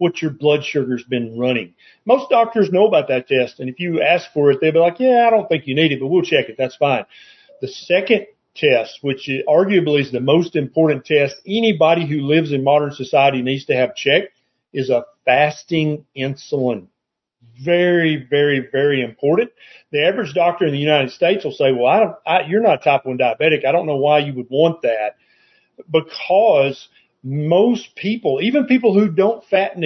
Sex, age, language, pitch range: male, 40-59, English, 135-185 Hz